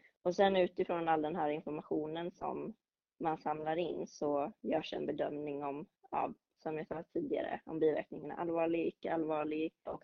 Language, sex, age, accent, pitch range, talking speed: Swedish, female, 20-39, native, 155-180 Hz, 160 wpm